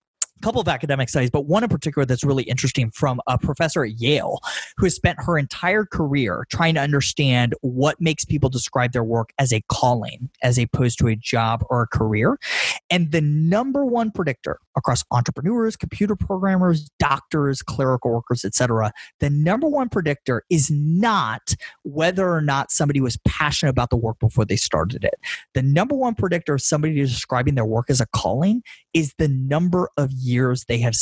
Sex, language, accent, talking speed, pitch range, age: male, English, American, 180 wpm, 125-165 Hz, 30-49